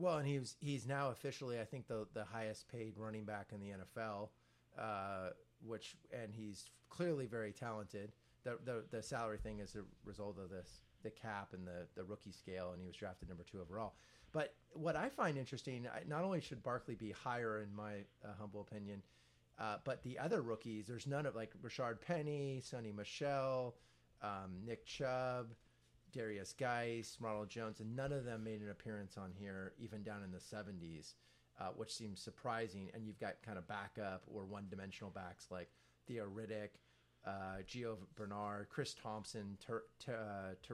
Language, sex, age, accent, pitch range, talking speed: English, male, 30-49, American, 100-120 Hz, 180 wpm